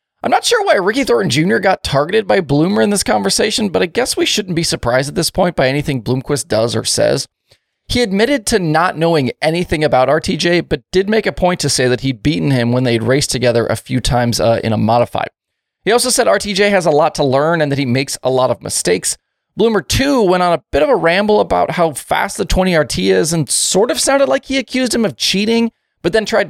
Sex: male